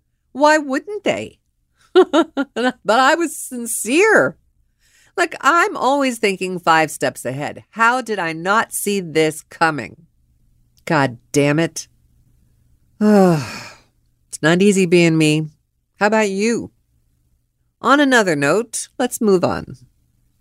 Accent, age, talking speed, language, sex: American, 50-69, 110 wpm, English, female